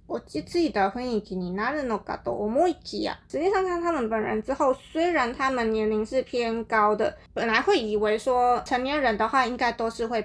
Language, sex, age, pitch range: Chinese, female, 20-39, 220-310 Hz